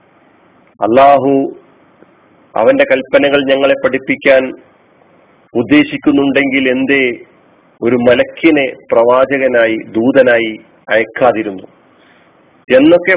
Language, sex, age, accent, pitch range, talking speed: Malayalam, male, 40-59, native, 125-180 Hz, 60 wpm